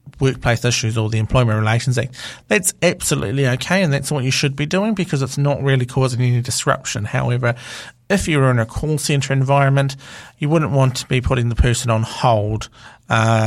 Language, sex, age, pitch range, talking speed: English, male, 40-59, 115-135 Hz, 190 wpm